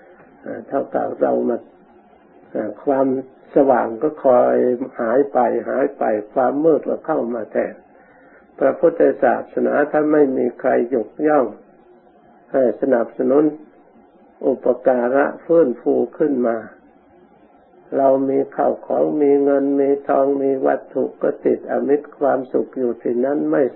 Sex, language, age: male, Thai, 60-79